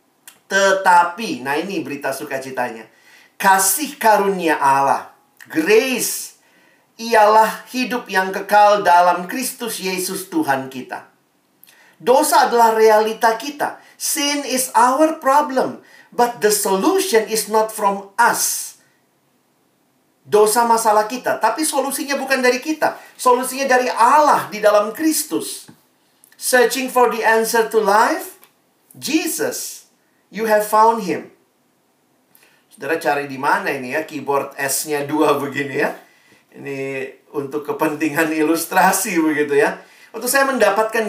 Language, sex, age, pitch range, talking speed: Indonesian, male, 50-69, 180-250 Hz, 115 wpm